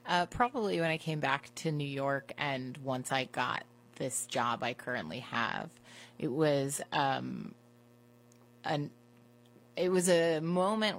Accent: American